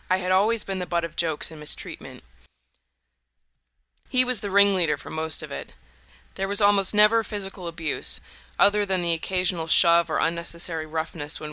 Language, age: English, 20-39